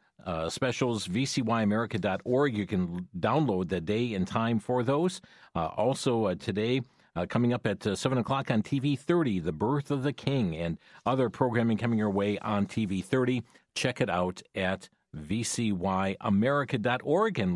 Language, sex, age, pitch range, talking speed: English, male, 50-69, 105-140 Hz, 155 wpm